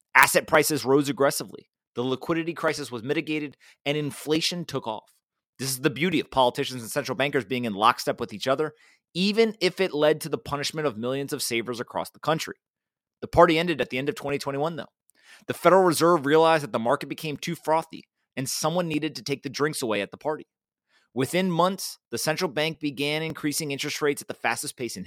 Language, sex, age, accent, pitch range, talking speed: English, male, 30-49, American, 135-160 Hz, 205 wpm